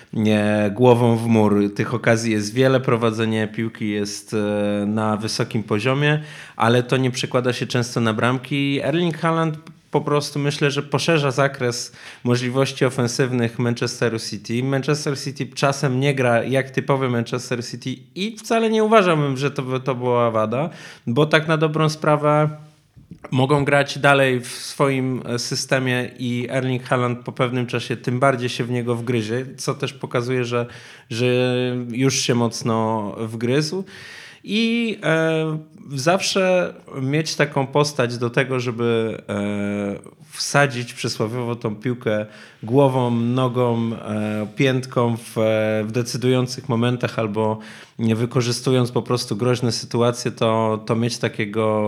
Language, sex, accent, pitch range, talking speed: Polish, male, native, 115-140 Hz, 135 wpm